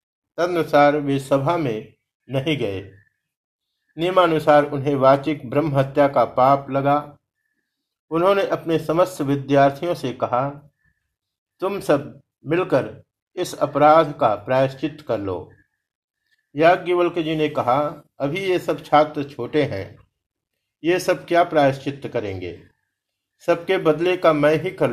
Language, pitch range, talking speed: Hindi, 140-170 Hz, 120 wpm